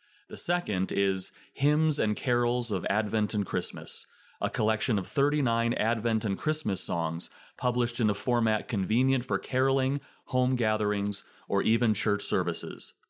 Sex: male